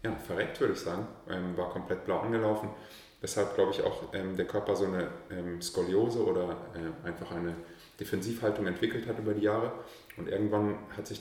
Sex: male